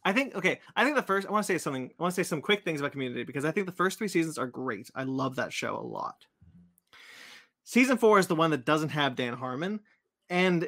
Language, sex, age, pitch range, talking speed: English, male, 30-49, 130-175 Hz, 265 wpm